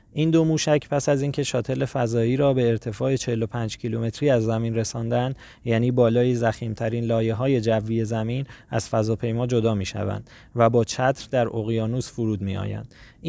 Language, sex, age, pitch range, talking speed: Persian, male, 20-39, 115-140 Hz, 160 wpm